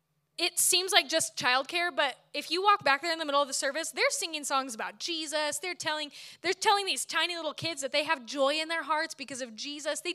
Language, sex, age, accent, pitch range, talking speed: English, female, 10-29, American, 260-340 Hz, 240 wpm